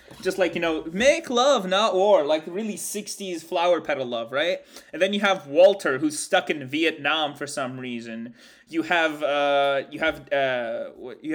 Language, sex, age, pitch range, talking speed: English, male, 20-39, 135-175 Hz, 180 wpm